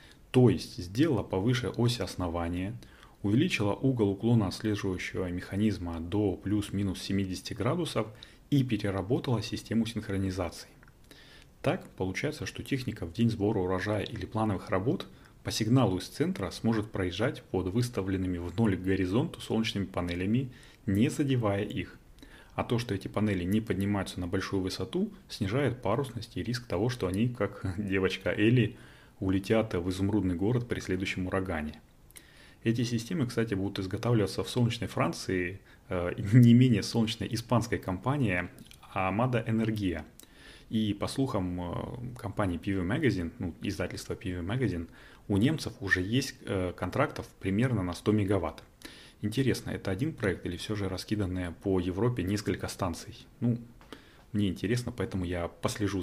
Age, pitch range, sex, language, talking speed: 30-49, 95-115 Hz, male, Russian, 135 wpm